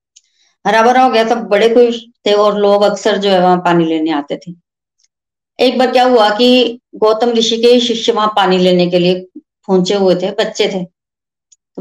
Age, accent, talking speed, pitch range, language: 20-39, native, 190 wpm, 195-240 Hz, Hindi